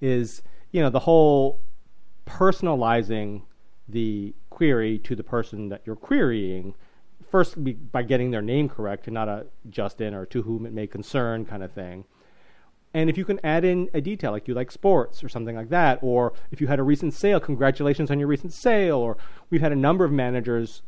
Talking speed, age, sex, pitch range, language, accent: 195 wpm, 40-59, male, 115-150 Hz, English, American